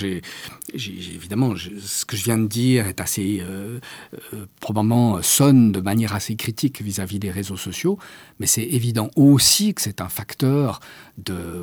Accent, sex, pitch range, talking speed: French, male, 100-135 Hz, 170 wpm